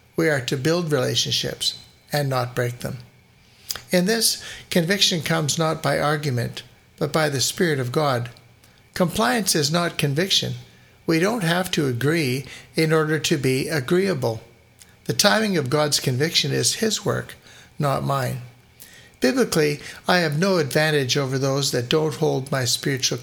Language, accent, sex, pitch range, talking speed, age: English, American, male, 130-165 Hz, 150 wpm, 60-79